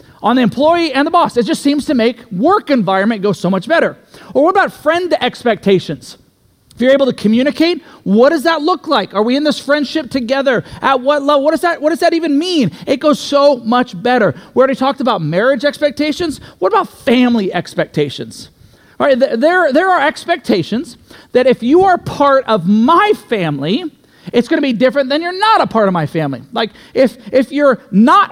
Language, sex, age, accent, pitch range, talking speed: English, male, 40-59, American, 220-300 Hz, 200 wpm